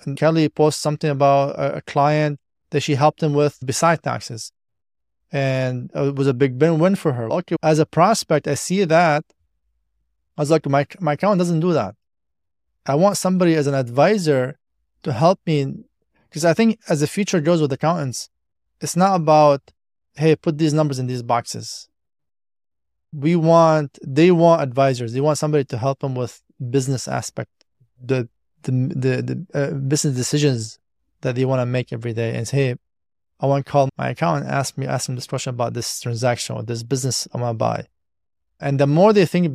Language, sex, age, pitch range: English, male, 20-39, 120-155 Hz